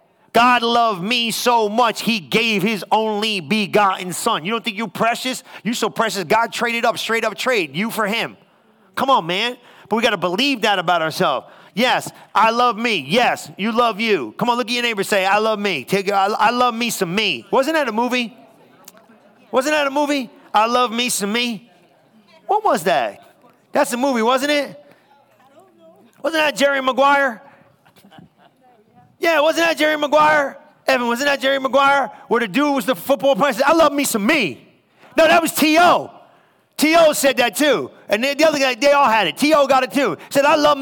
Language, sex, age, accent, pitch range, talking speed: English, male, 30-49, American, 220-280 Hz, 195 wpm